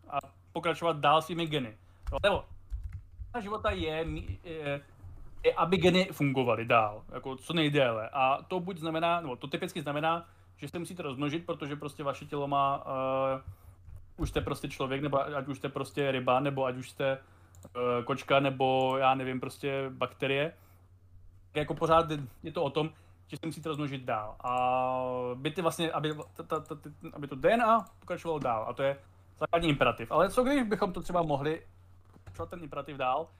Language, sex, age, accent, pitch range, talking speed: Czech, male, 30-49, native, 125-155 Hz, 180 wpm